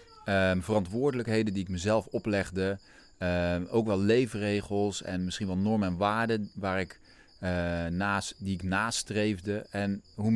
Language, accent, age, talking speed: Dutch, Dutch, 40-59, 145 wpm